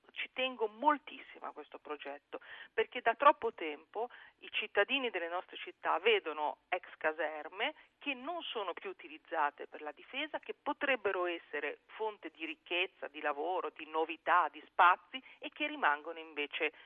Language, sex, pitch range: Italian, female, 160-240 Hz